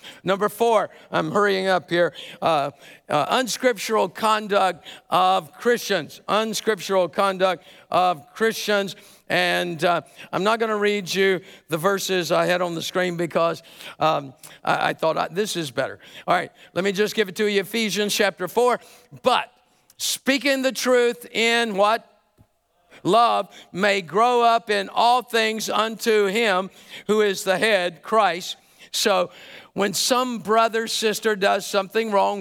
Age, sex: 50-69, male